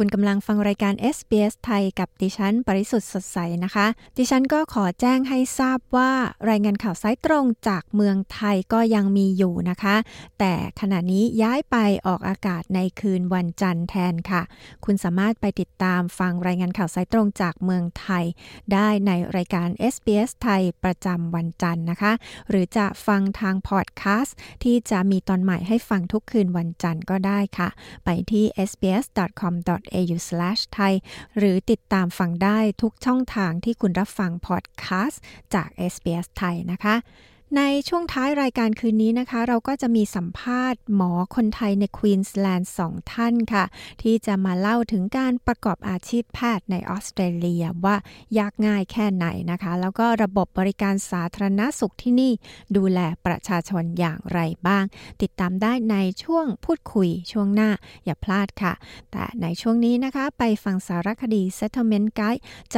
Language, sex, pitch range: Thai, female, 185-225 Hz